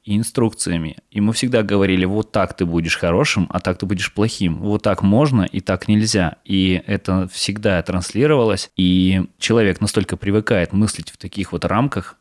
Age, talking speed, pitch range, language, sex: 20-39, 165 wpm, 90-105 Hz, Russian, male